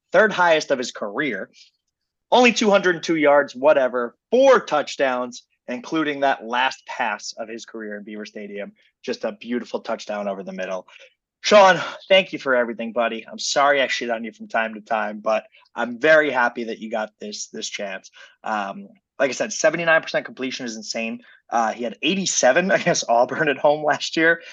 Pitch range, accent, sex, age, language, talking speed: 115-190 Hz, American, male, 20-39, English, 175 wpm